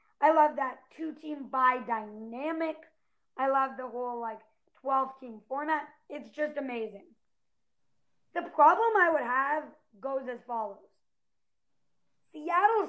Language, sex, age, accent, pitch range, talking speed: English, female, 20-39, American, 240-310 Hz, 115 wpm